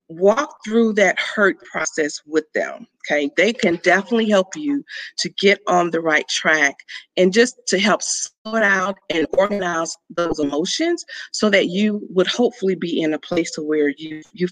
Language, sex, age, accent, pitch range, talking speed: English, female, 40-59, American, 165-225 Hz, 175 wpm